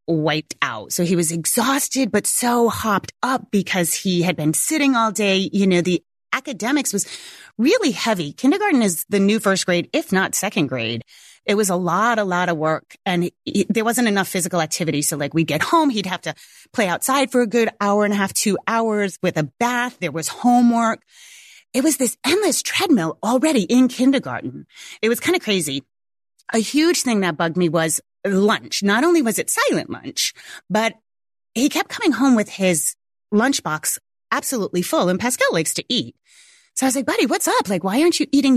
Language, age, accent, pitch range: English, 30-49, American, 175-265 Hz